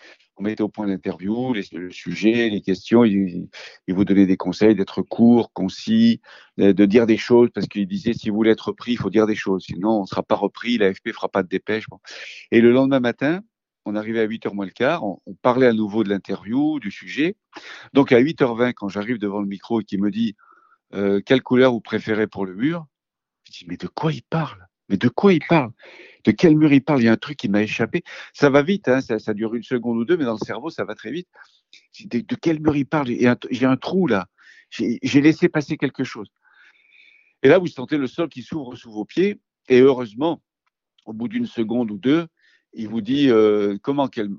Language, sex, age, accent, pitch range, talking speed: French, male, 50-69, French, 100-135 Hz, 235 wpm